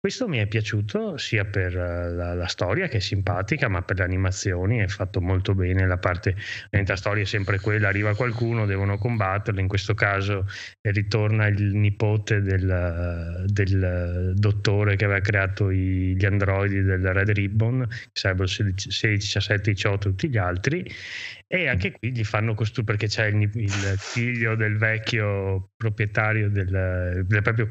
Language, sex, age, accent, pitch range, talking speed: Italian, male, 20-39, native, 95-110 Hz, 160 wpm